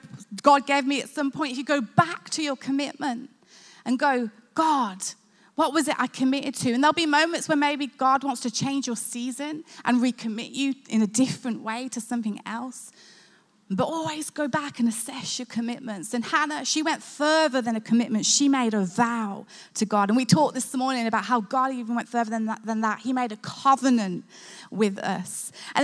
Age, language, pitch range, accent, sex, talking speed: 20-39, English, 220-275 Hz, British, female, 200 wpm